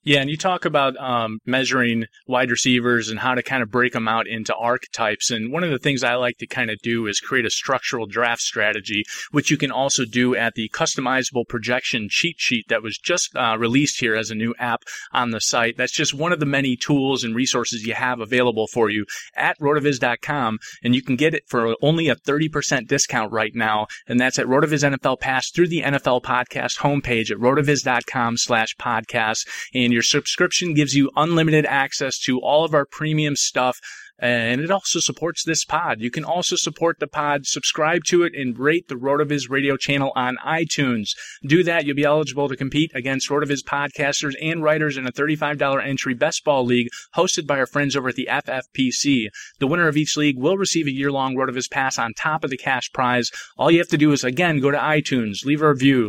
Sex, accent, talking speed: male, American, 215 wpm